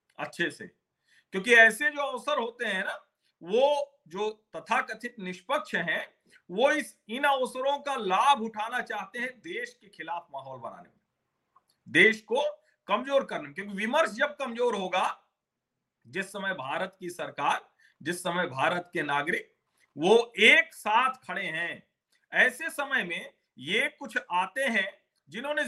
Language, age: Hindi, 50-69